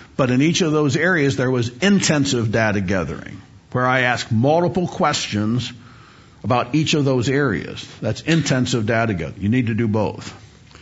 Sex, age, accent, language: male, 50-69, American, English